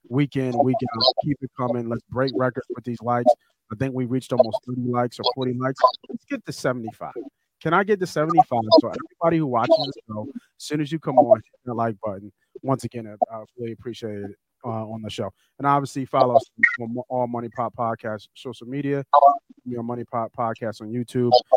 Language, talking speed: English, 210 wpm